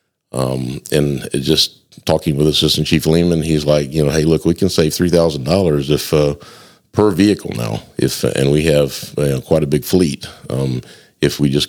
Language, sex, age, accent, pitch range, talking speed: English, male, 50-69, American, 70-85 Hz, 190 wpm